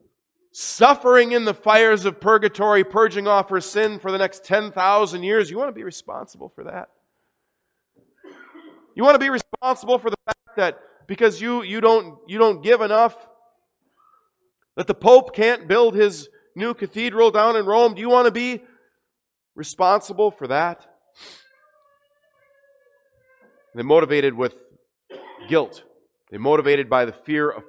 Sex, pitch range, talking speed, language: male, 145-235 Hz, 145 wpm, English